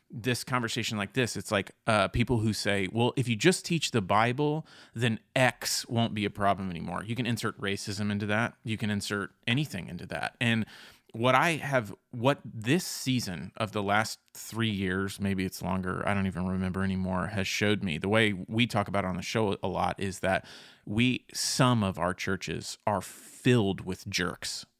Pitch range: 100-125 Hz